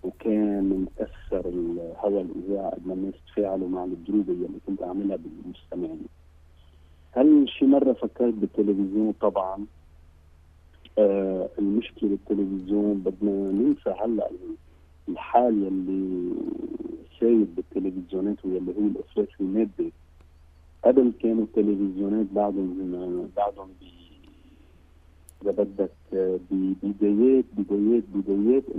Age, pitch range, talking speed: 50-69, 85-110 Hz, 95 wpm